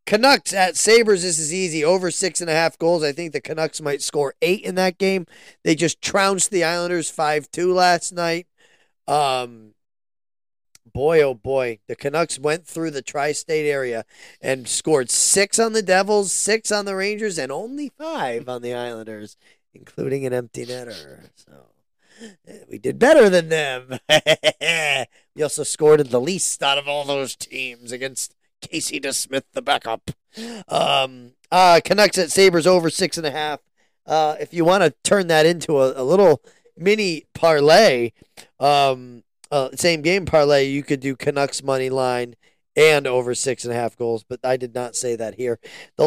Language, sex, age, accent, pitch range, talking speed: English, male, 20-39, American, 130-185 Hz, 175 wpm